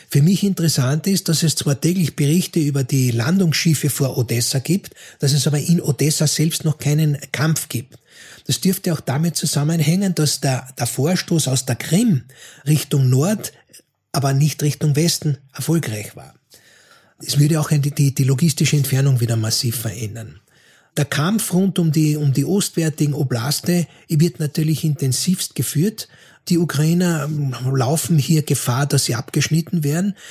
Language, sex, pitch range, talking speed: German, male, 140-175 Hz, 155 wpm